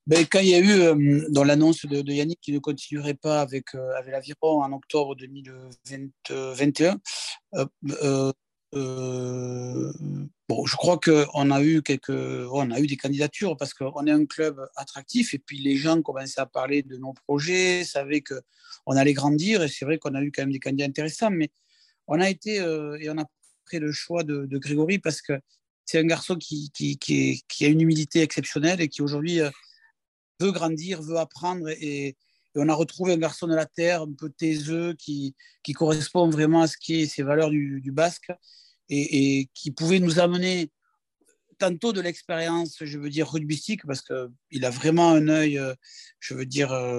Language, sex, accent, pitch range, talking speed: French, male, French, 140-170 Hz, 190 wpm